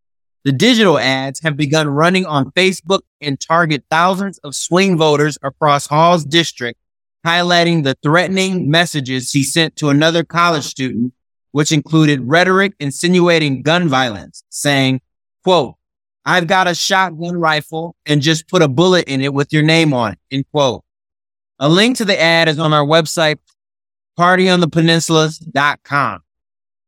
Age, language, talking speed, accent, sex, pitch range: 30-49, English, 145 wpm, American, male, 140-170 Hz